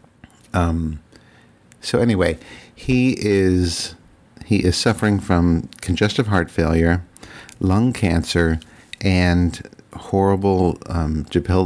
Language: English